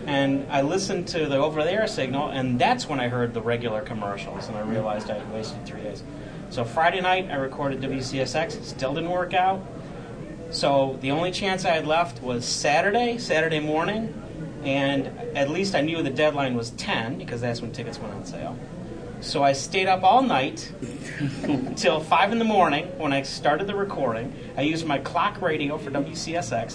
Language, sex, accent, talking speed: English, male, American, 190 wpm